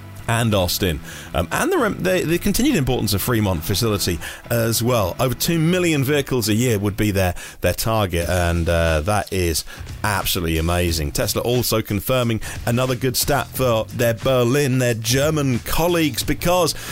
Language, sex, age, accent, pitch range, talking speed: English, male, 40-59, British, 110-145 Hz, 155 wpm